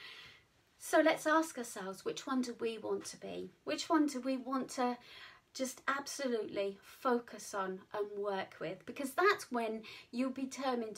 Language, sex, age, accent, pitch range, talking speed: English, female, 30-49, British, 215-305 Hz, 165 wpm